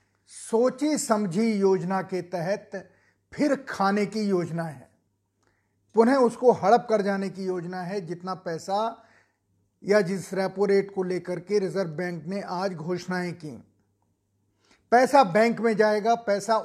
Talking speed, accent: 135 wpm, native